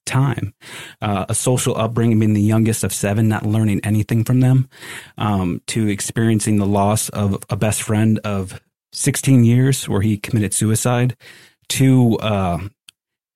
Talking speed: 150 wpm